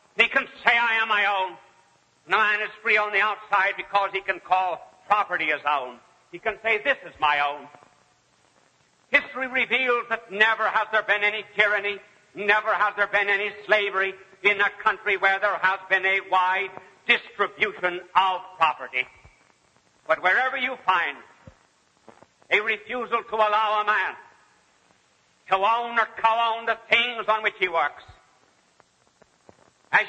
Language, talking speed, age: English, 150 wpm, 60-79